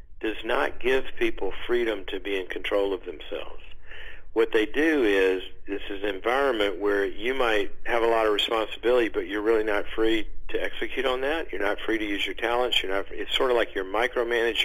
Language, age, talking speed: English, 50-69, 210 wpm